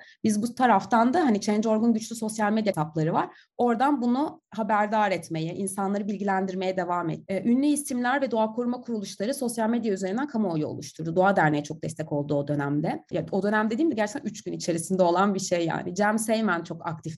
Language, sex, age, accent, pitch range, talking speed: Turkish, female, 30-49, native, 175-245 Hz, 190 wpm